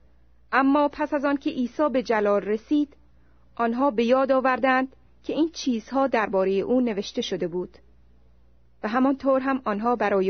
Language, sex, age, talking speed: Persian, female, 30-49, 150 wpm